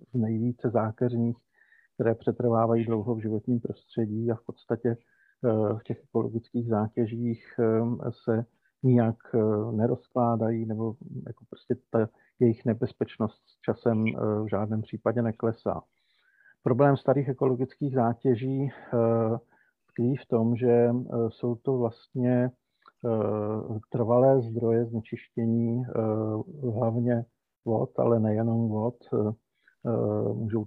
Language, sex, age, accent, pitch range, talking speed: Czech, male, 50-69, native, 110-120 Hz, 95 wpm